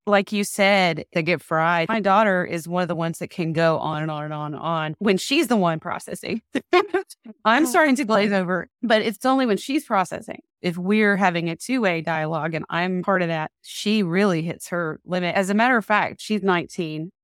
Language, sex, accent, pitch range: English, female, American, 165-205 Hz